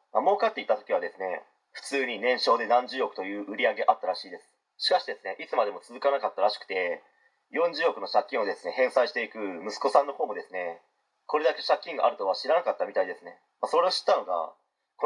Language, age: Japanese, 30-49